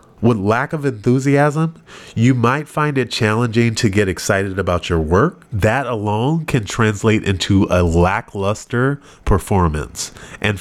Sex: male